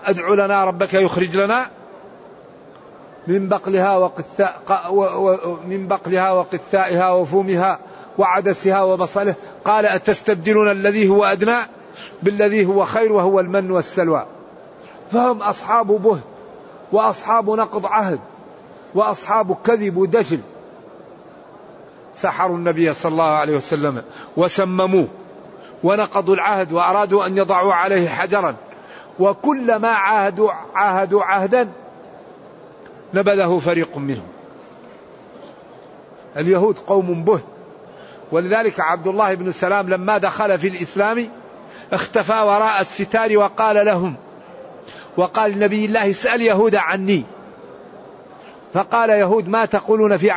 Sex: male